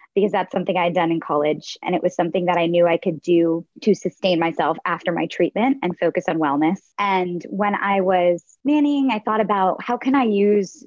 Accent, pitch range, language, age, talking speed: American, 170-215 Hz, English, 20-39, 220 wpm